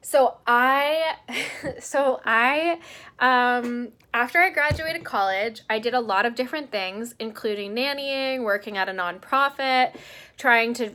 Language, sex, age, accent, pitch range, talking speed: English, female, 10-29, American, 205-255 Hz, 130 wpm